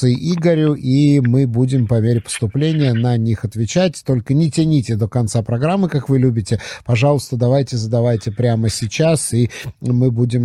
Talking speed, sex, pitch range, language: 155 wpm, male, 120-145 Hz, Russian